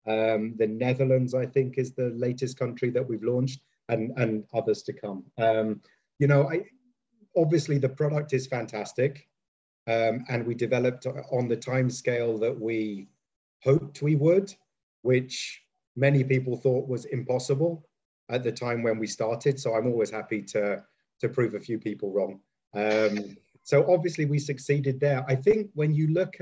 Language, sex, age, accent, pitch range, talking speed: English, male, 30-49, British, 125-165 Hz, 165 wpm